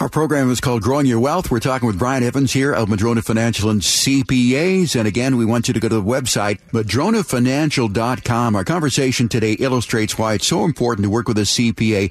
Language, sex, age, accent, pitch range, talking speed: English, male, 50-69, American, 100-125 Hz, 210 wpm